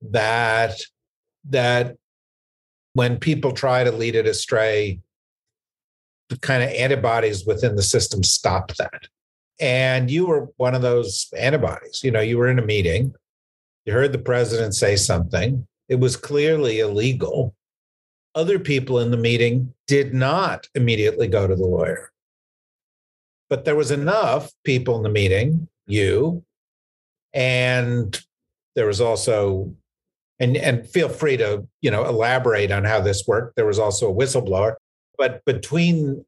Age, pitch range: 50-69, 110-140 Hz